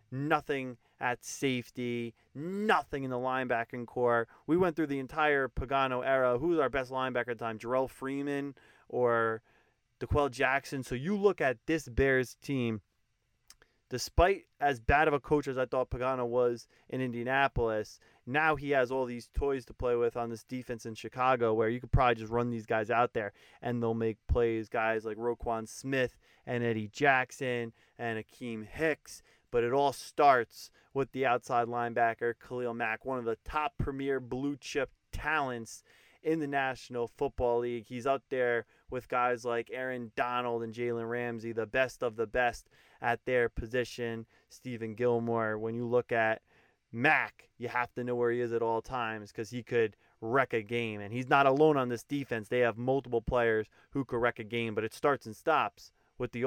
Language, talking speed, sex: English, 185 wpm, male